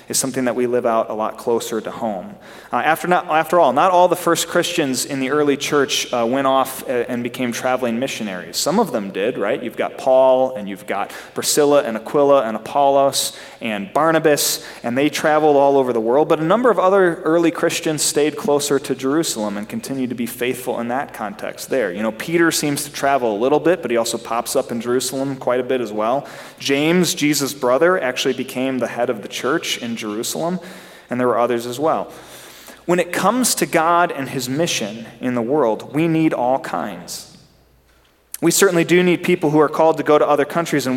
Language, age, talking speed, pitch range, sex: English, 30-49, 210 wpm, 120-155 Hz, male